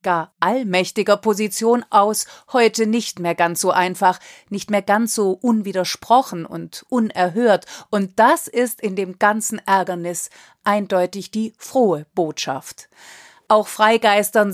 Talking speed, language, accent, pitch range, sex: 120 wpm, German, German, 195-235 Hz, female